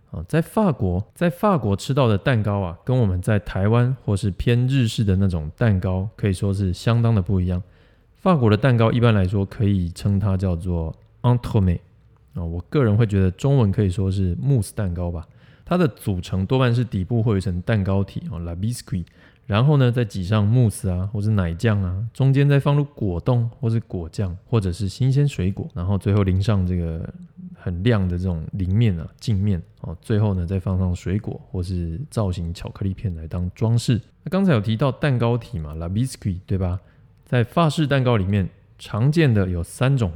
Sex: male